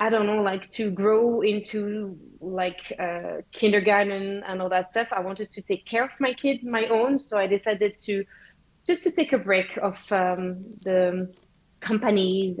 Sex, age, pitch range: female, 20-39, 185-230 Hz